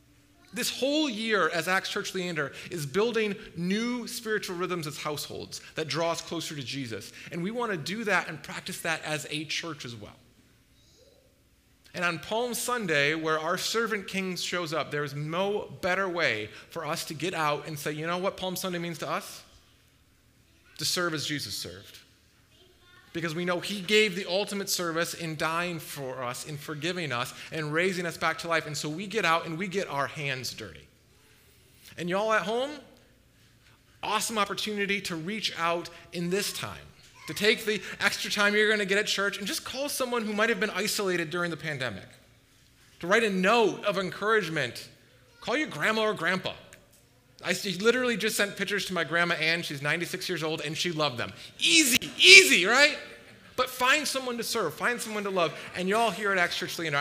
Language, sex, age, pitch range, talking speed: English, male, 30-49, 155-210 Hz, 195 wpm